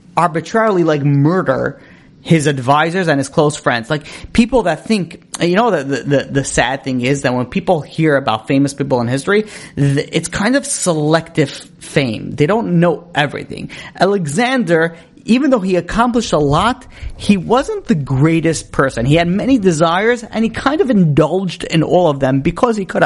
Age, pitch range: 30-49, 140-185 Hz